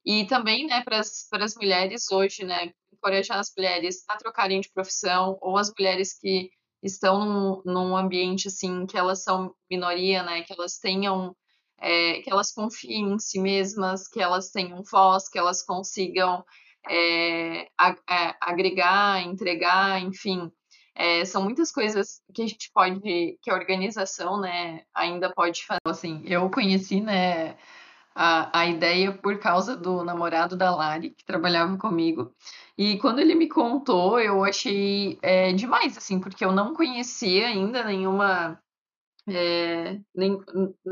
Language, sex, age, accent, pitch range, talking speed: Portuguese, female, 20-39, Brazilian, 180-200 Hz, 150 wpm